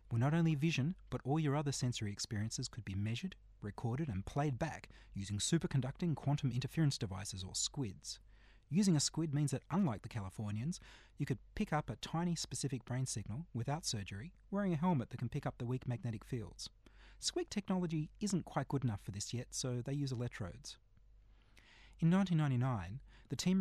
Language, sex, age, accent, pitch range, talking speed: English, male, 30-49, Australian, 110-150 Hz, 180 wpm